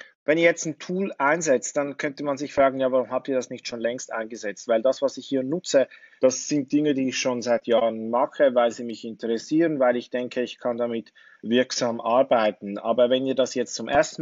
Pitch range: 115-135 Hz